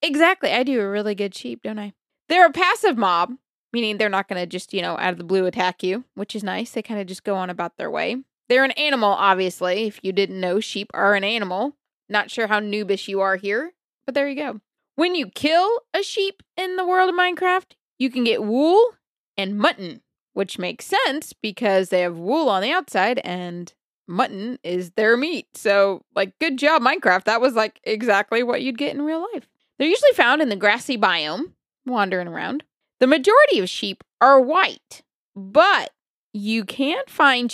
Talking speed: 205 wpm